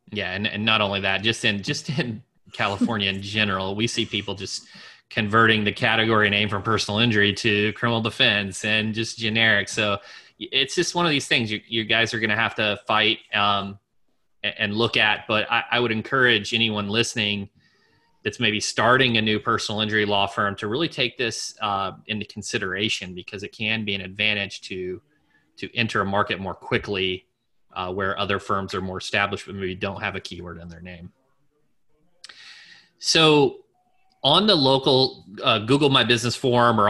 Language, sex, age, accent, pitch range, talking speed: English, male, 30-49, American, 100-120 Hz, 180 wpm